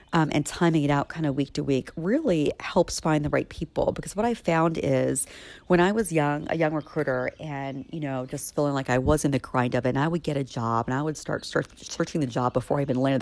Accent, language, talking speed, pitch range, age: American, English, 270 wpm, 135-165 Hz, 40-59